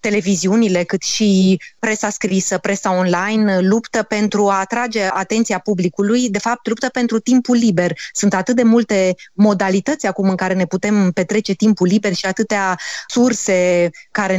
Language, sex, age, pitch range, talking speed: Romanian, female, 20-39, 190-220 Hz, 150 wpm